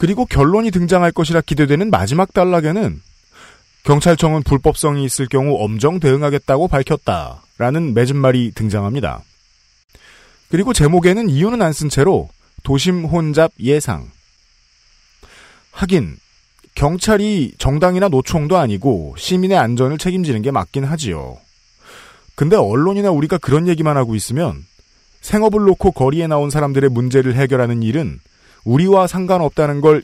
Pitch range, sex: 125-185 Hz, male